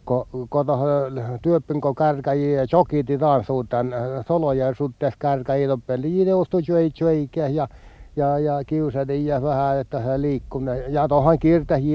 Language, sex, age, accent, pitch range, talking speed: Finnish, male, 60-79, native, 125-165 Hz, 110 wpm